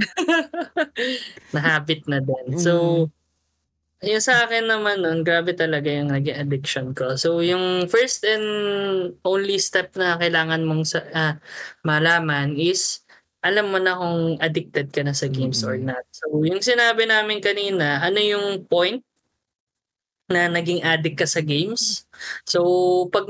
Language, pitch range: Filipino, 150-200 Hz